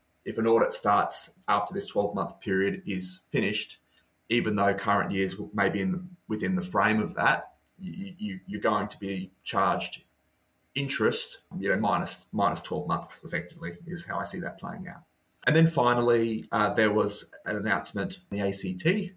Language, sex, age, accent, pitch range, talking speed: English, male, 30-49, Australian, 95-120 Hz, 180 wpm